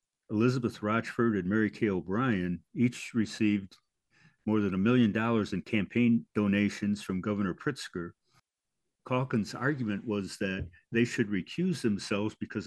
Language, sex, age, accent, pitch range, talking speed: English, male, 60-79, American, 100-115 Hz, 135 wpm